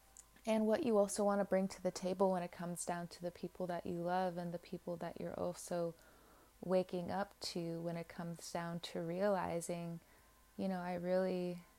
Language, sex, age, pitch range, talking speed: English, female, 20-39, 170-200 Hz, 200 wpm